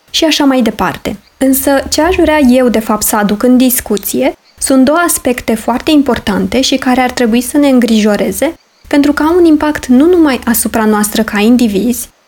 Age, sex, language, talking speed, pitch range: 20-39, female, Romanian, 180 wpm, 220-280 Hz